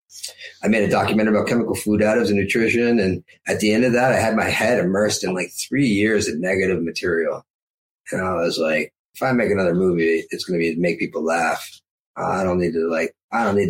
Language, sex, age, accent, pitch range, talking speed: English, male, 30-49, American, 95-120 Hz, 230 wpm